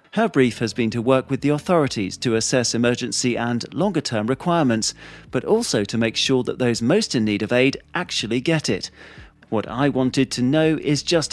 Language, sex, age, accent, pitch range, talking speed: English, male, 40-59, British, 115-150 Hz, 195 wpm